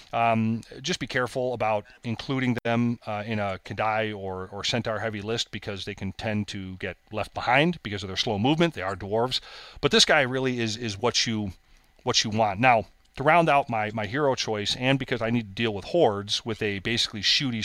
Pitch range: 105-120 Hz